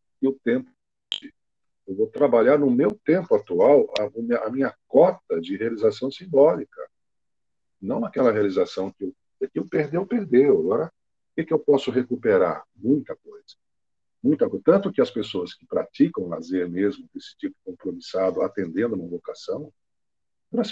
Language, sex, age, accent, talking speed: Portuguese, male, 50-69, Brazilian, 145 wpm